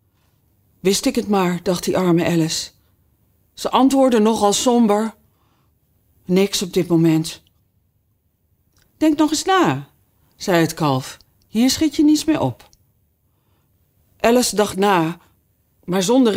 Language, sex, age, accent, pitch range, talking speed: Dutch, female, 40-59, Dutch, 175-260 Hz, 125 wpm